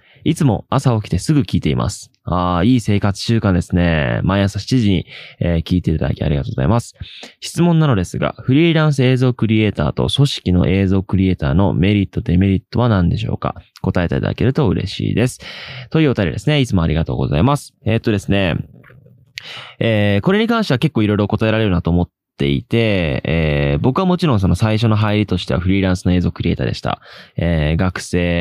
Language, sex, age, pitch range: Japanese, male, 20-39, 85-120 Hz